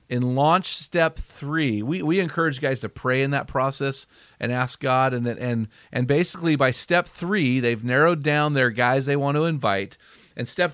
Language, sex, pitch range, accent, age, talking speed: English, male, 125-155 Hz, American, 40-59, 190 wpm